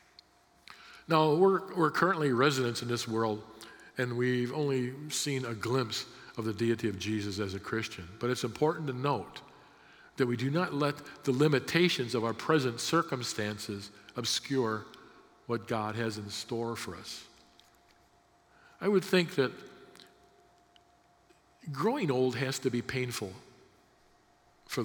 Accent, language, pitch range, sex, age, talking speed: American, English, 120-160 Hz, male, 50-69, 140 wpm